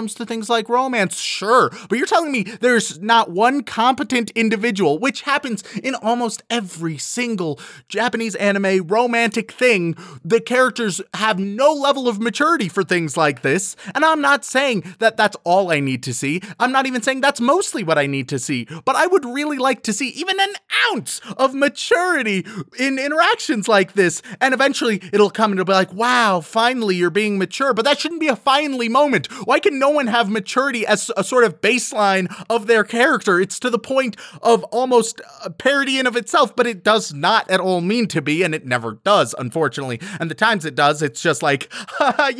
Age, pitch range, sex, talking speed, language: 30-49, 185-255 Hz, male, 200 wpm, English